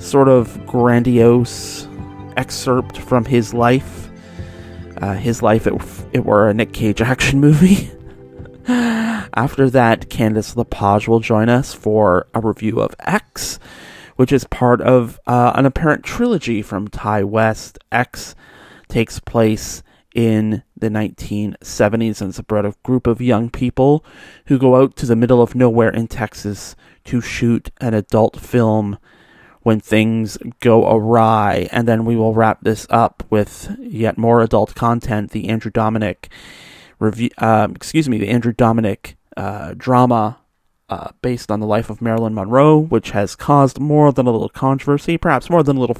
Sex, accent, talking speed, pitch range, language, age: male, American, 155 wpm, 105-125 Hz, English, 30-49